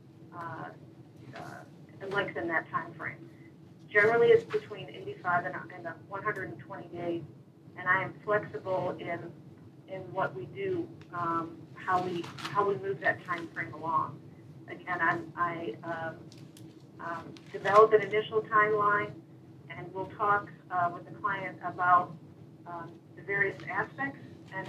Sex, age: female, 40-59